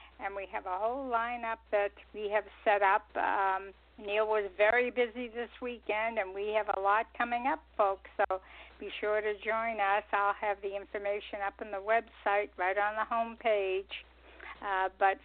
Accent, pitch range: American, 195-215 Hz